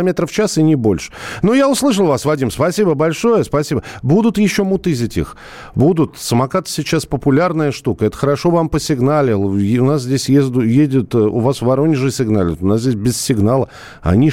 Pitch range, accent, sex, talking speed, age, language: 100-150 Hz, native, male, 180 wpm, 50-69, Russian